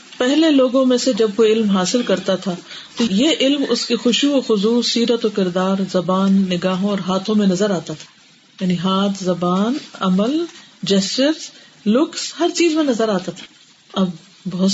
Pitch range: 185-235 Hz